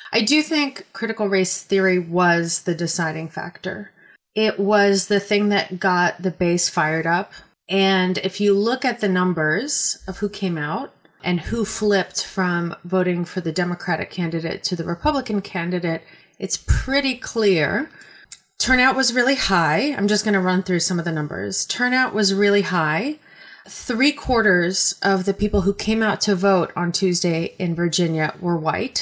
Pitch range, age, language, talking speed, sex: 170-205 Hz, 30-49, English, 170 wpm, female